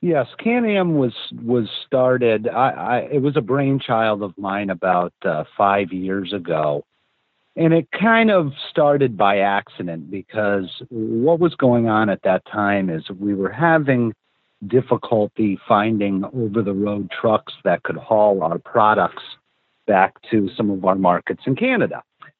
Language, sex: English, male